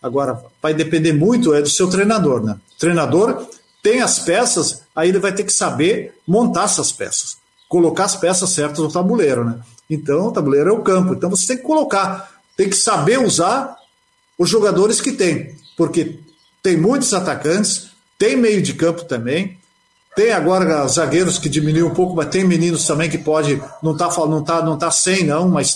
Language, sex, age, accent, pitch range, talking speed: Portuguese, male, 50-69, Brazilian, 150-195 Hz, 185 wpm